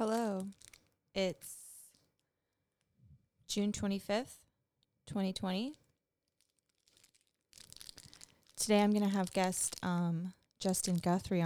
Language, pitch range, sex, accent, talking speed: English, 150-180 Hz, female, American, 75 wpm